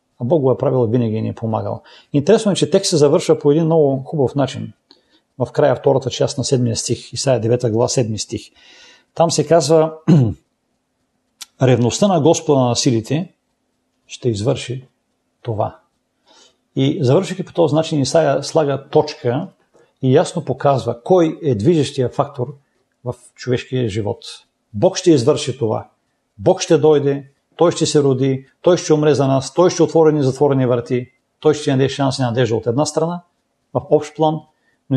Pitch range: 120-155 Hz